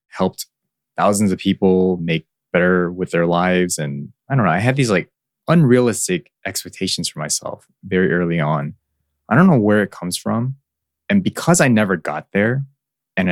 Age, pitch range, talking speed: 20-39, 90-120 Hz, 170 wpm